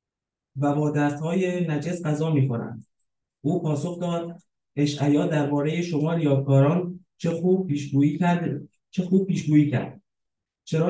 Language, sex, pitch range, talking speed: Persian, male, 140-175 Hz, 120 wpm